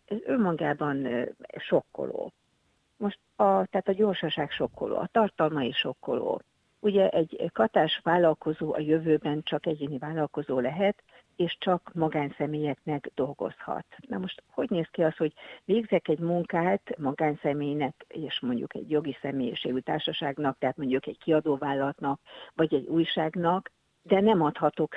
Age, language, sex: 50-69, Hungarian, female